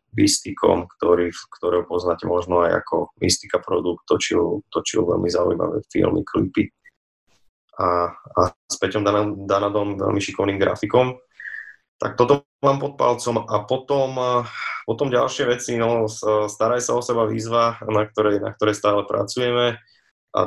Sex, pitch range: male, 95-120 Hz